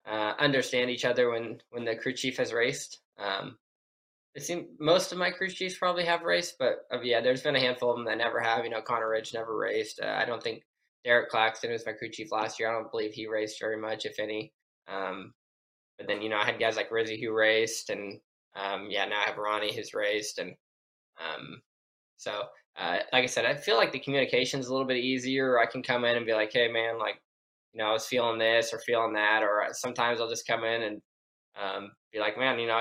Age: 10-29